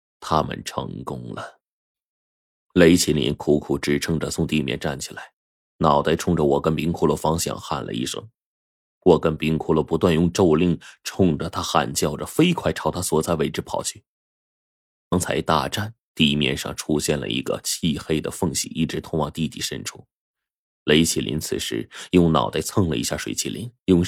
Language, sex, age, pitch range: Chinese, male, 20-39, 75-90 Hz